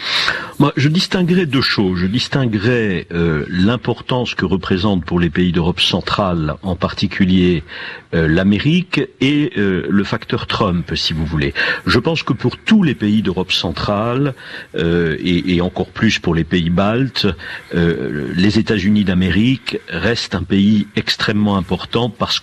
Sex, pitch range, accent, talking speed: male, 90-130 Hz, French, 155 wpm